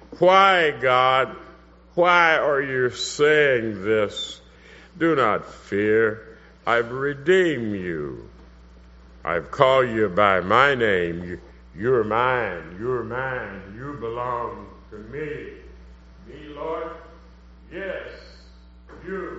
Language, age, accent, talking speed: English, 60-79, American, 95 wpm